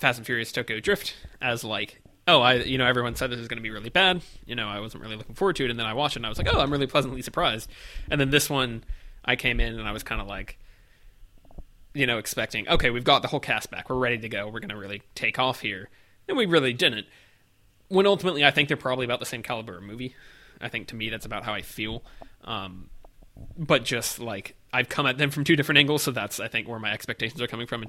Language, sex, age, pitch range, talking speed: English, male, 20-39, 105-135 Hz, 270 wpm